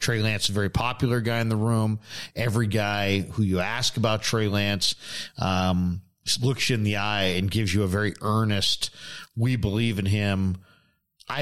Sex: male